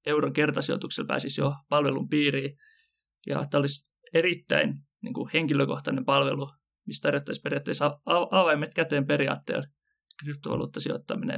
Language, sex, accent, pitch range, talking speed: Finnish, male, native, 135-150 Hz, 115 wpm